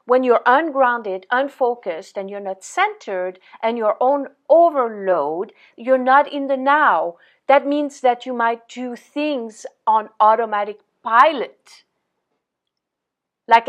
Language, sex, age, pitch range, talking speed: English, female, 50-69, 210-270 Hz, 125 wpm